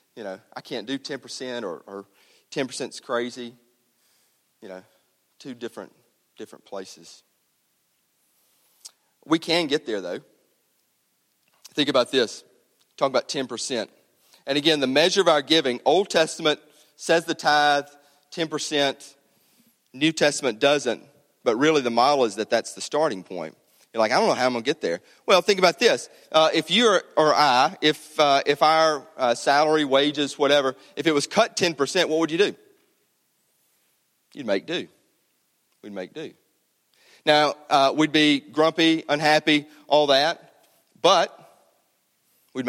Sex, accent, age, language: male, American, 40-59, English